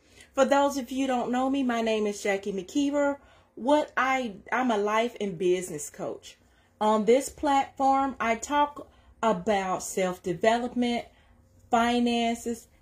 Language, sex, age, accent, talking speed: English, female, 30-49, American, 140 wpm